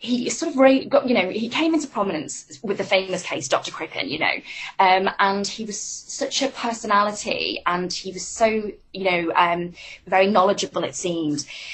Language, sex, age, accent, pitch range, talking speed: English, female, 20-39, British, 180-205 Hz, 190 wpm